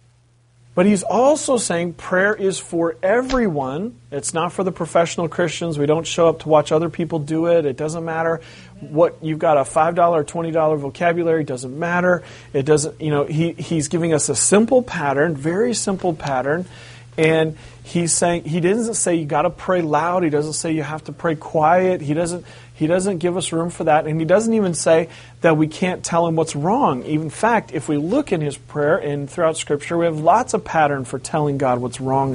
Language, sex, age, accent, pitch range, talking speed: English, male, 40-59, American, 130-175 Hz, 205 wpm